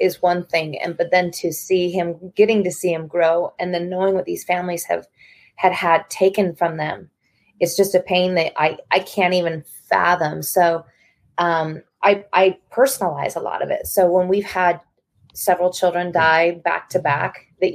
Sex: female